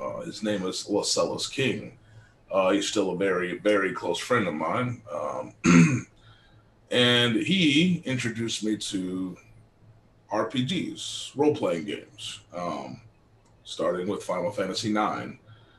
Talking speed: 120 wpm